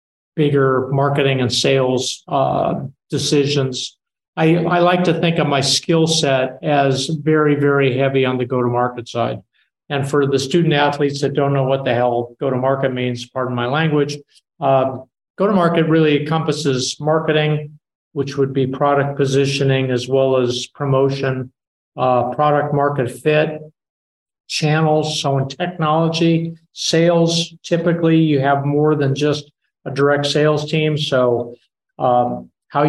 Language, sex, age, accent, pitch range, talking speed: English, male, 50-69, American, 135-150 Hz, 135 wpm